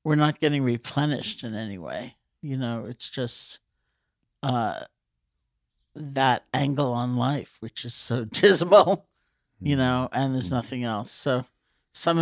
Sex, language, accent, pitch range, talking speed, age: male, English, American, 120-145 Hz, 135 wpm, 60-79